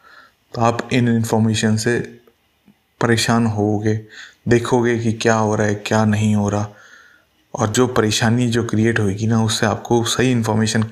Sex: male